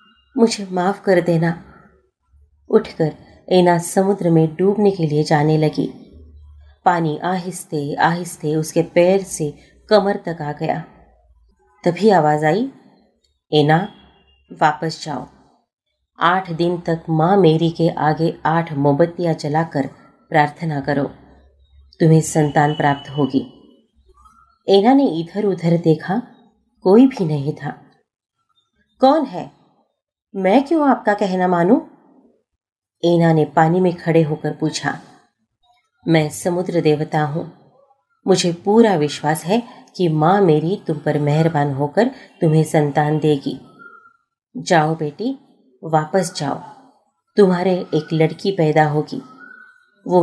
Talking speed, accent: 115 wpm, native